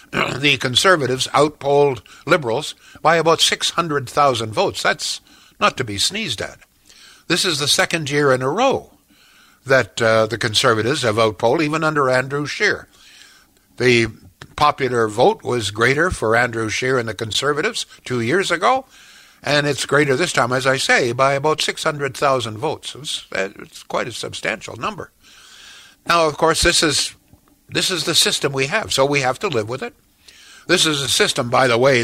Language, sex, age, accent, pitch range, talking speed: English, male, 60-79, American, 115-155 Hz, 165 wpm